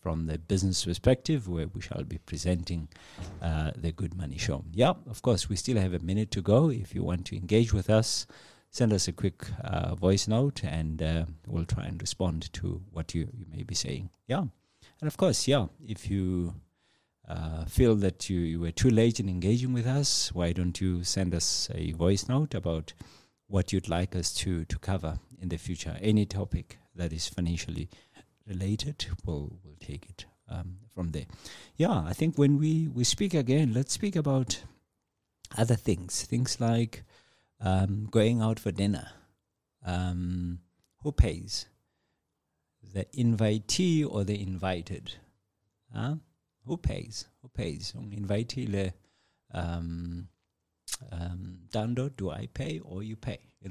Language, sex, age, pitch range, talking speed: English, male, 50-69, 90-115 Hz, 165 wpm